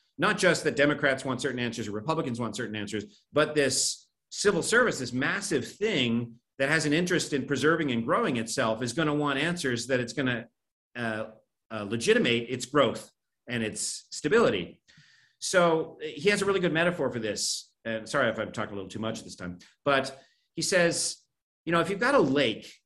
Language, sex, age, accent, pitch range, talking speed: English, male, 40-59, American, 120-170 Hz, 200 wpm